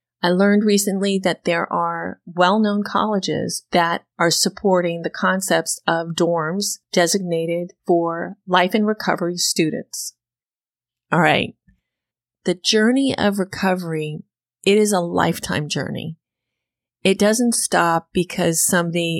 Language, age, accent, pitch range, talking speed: English, 30-49, American, 160-205 Hz, 115 wpm